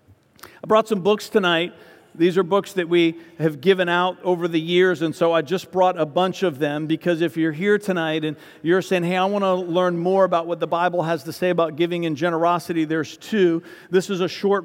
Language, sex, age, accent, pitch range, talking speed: English, male, 50-69, American, 160-185 Hz, 230 wpm